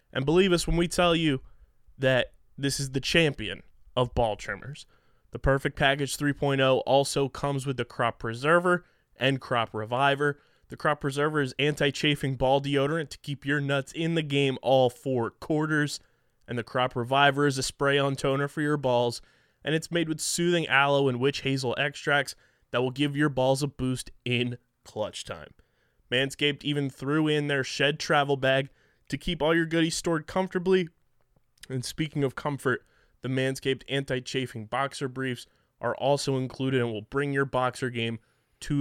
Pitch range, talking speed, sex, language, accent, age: 130-150 Hz, 170 wpm, male, English, American, 20-39